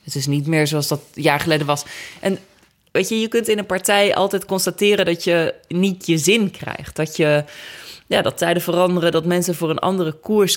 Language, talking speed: Dutch, 215 wpm